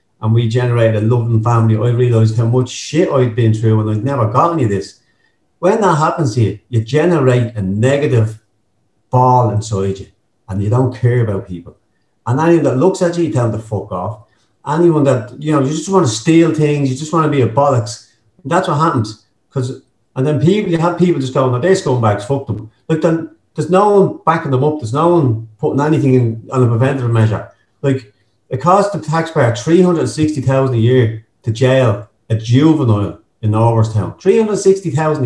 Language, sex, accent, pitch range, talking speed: English, male, British, 110-150 Hz, 200 wpm